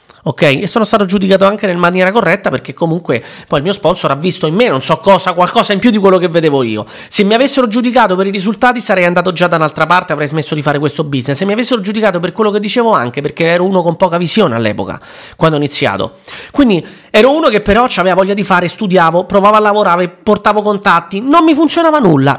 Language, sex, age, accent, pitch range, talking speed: Italian, male, 30-49, native, 160-215 Hz, 235 wpm